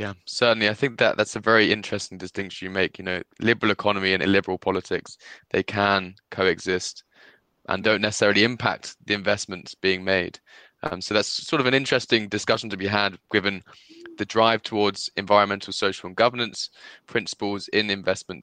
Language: English